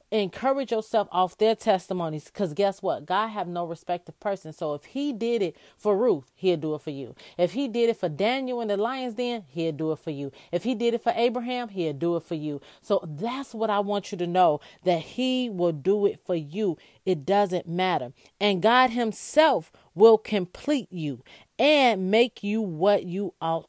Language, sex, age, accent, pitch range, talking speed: English, female, 30-49, American, 170-230 Hz, 210 wpm